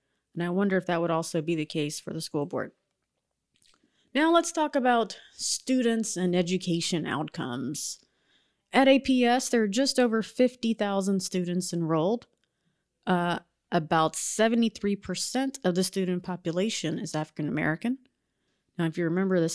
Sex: female